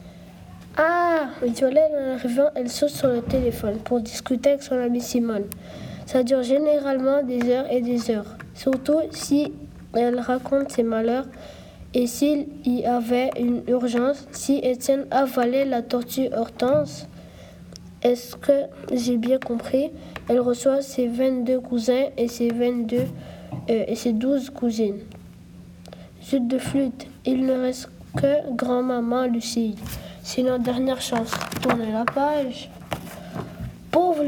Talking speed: 130 wpm